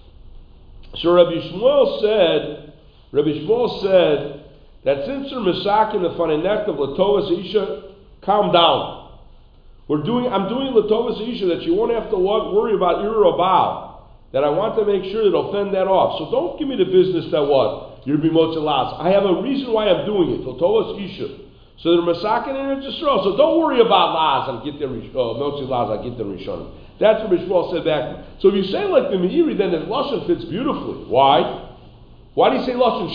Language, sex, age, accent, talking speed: English, male, 50-69, American, 205 wpm